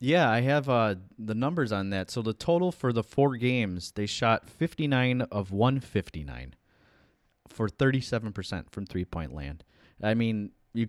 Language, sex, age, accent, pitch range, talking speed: English, male, 20-39, American, 95-120 Hz, 155 wpm